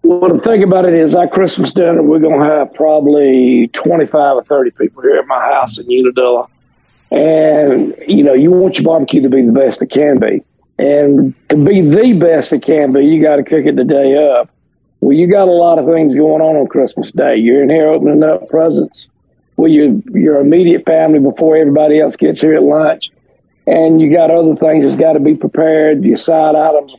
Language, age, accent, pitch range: English, 50-69, American, 150-180 Hz